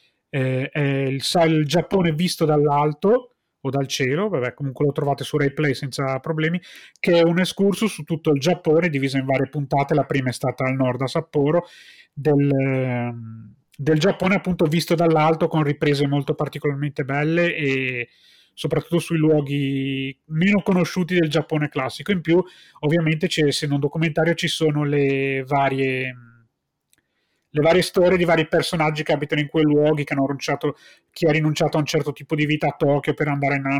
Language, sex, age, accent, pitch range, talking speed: Italian, male, 30-49, native, 135-170 Hz, 170 wpm